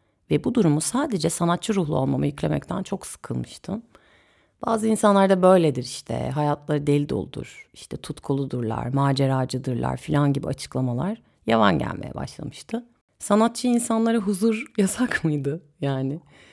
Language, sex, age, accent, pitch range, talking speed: Turkish, female, 30-49, native, 140-195 Hz, 125 wpm